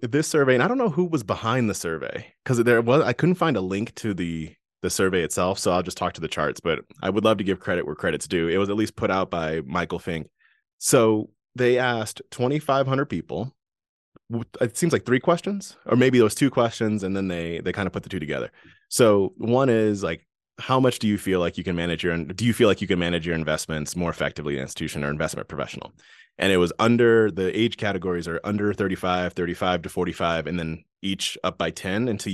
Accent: American